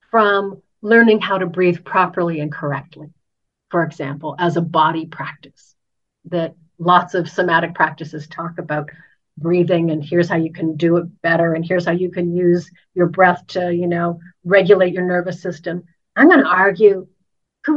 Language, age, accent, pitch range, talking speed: English, 50-69, American, 175-230 Hz, 170 wpm